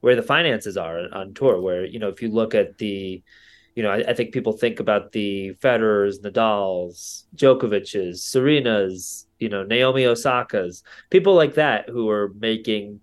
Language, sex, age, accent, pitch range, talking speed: English, male, 30-49, American, 100-125 Hz, 170 wpm